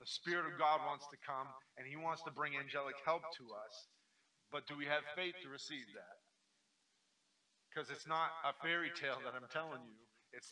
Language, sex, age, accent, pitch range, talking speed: English, male, 40-59, American, 120-150 Hz, 200 wpm